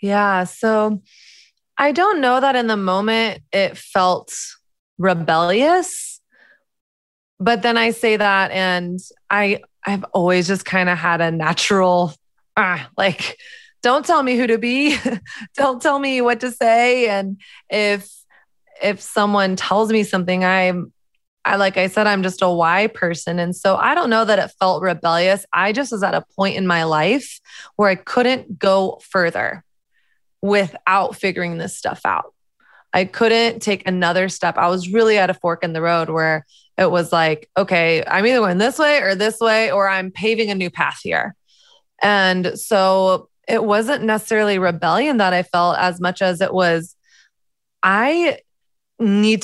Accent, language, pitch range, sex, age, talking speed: American, English, 180-225 Hz, female, 20-39, 165 wpm